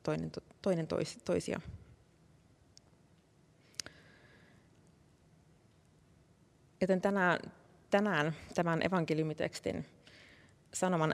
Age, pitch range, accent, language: 20-39, 150-170 Hz, native, Finnish